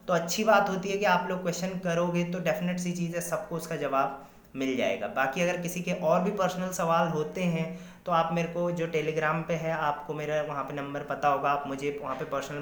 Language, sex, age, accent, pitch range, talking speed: Hindi, male, 20-39, native, 160-215 Hz, 240 wpm